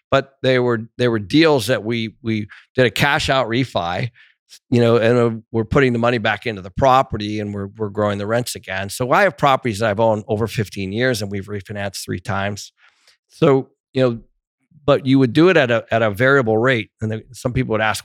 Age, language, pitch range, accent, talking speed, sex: 50-69, English, 110-135 Hz, American, 225 wpm, male